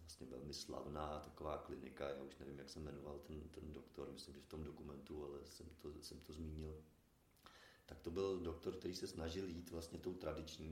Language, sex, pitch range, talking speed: Czech, male, 75-85 Hz, 200 wpm